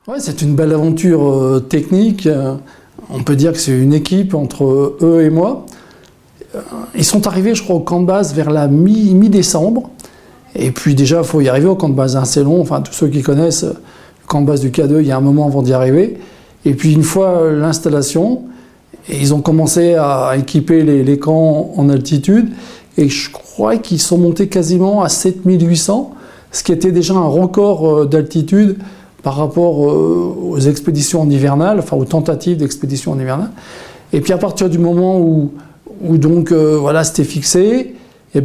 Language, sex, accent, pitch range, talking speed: French, male, French, 150-185 Hz, 185 wpm